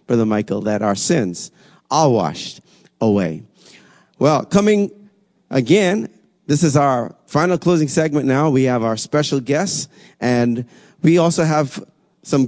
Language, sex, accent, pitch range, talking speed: English, male, American, 120-155 Hz, 135 wpm